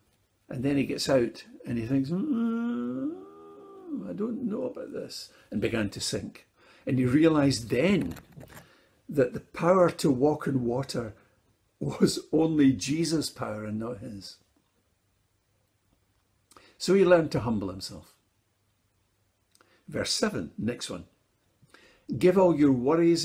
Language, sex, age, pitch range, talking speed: English, male, 60-79, 105-180 Hz, 130 wpm